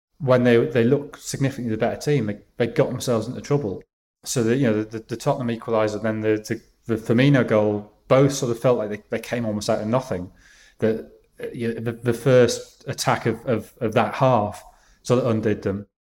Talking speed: 215 wpm